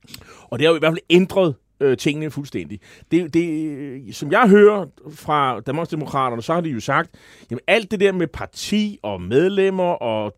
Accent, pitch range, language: native, 120-165 Hz, Danish